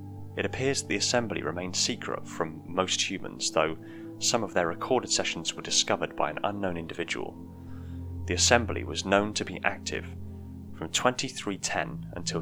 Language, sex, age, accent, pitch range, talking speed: English, male, 30-49, British, 85-115 Hz, 150 wpm